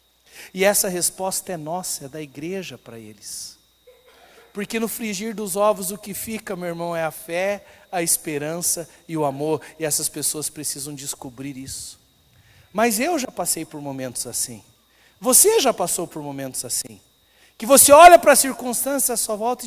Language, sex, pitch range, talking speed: Portuguese, male, 135-210 Hz, 170 wpm